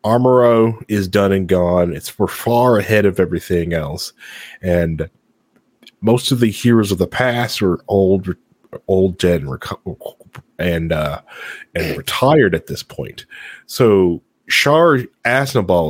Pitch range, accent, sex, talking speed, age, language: 85-115 Hz, American, male, 130 wpm, 30-49, English